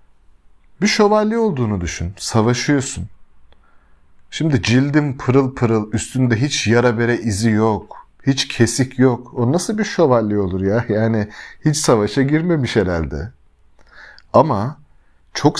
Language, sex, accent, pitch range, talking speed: Turkish, male, native, 90-125 Hz, 120 wpm